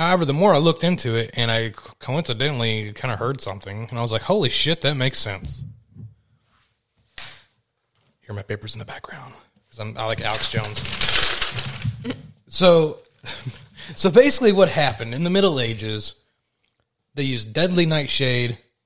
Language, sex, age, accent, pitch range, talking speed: English, male, 30-49, American, 115-155 Hz, 155 wpm